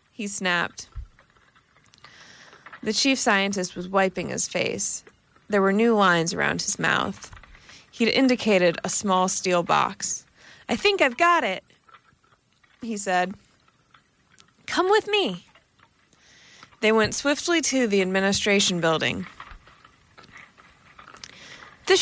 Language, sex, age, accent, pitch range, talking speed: English, female, 20-39, American, 185-240 Hz, 110 wpm